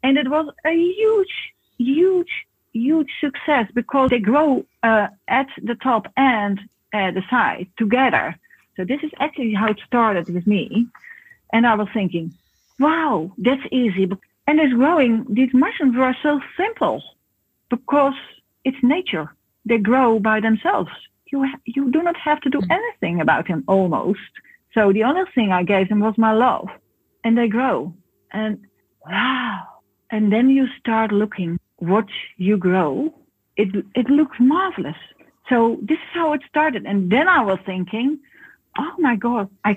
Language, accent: English, Dutch